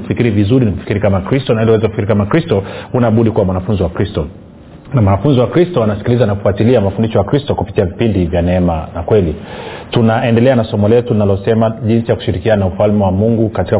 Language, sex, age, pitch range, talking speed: Swahili, male, 30-49, 100-120 Hz, 210 wpm